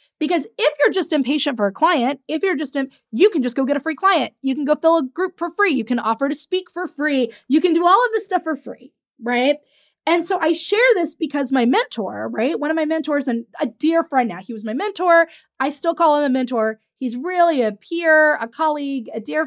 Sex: female